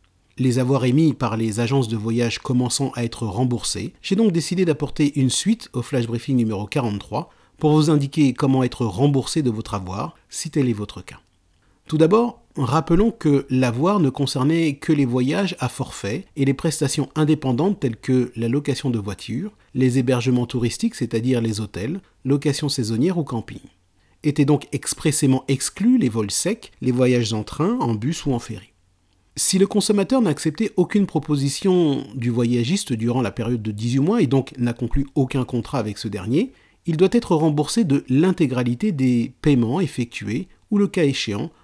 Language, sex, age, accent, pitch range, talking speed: French, male, 40-59, French, 115-150 Hz, 175 wpm